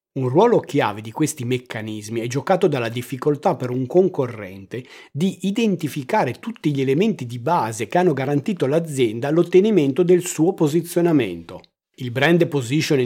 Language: Italian